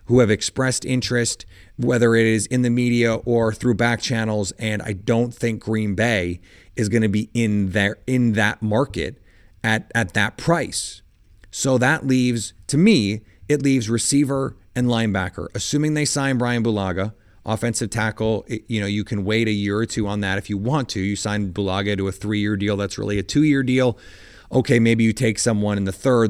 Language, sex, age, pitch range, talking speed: English, male, 30-49, 100-125 Hz, 190 wpm